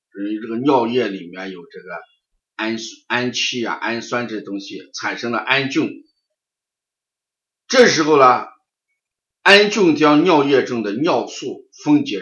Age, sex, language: 50-69, male, Chinese